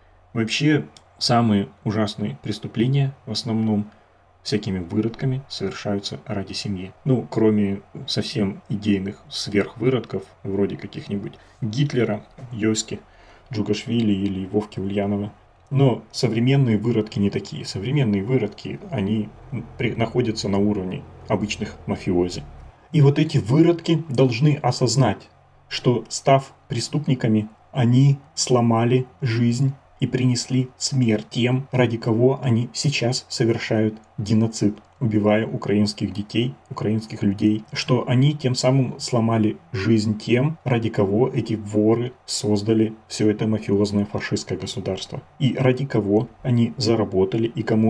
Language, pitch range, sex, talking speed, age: Russian, 105-125 Hz, male, 110 wpm, 30-49